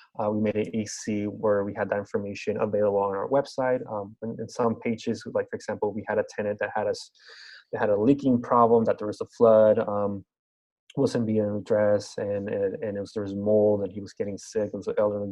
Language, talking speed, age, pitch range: English, 230 wpm, 20-39, 100-115 Hz